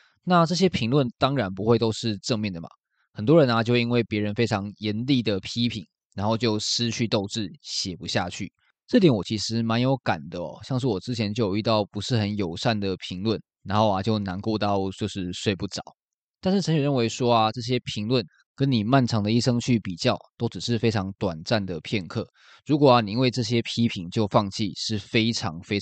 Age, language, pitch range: 20-39, Chinese, 100-125 Hz